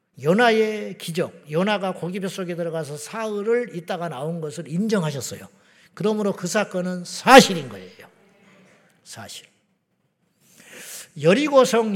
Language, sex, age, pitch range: Korean, male, 50-69, 165-205 Hz